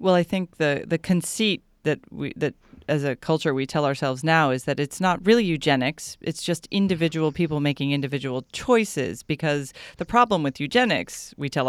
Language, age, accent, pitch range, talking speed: English, 40-59, American, 140-180 Hz, 185 wpm